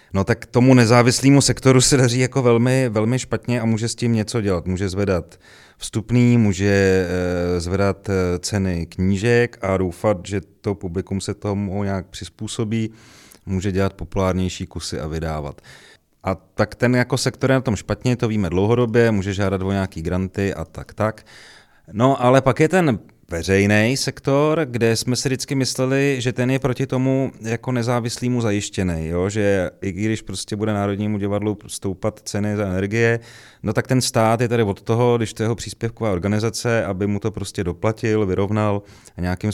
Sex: male